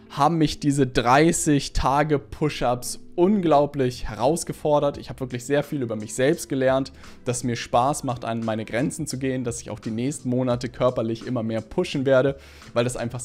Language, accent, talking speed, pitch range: German, German, 170 wpm, 120-155 Hz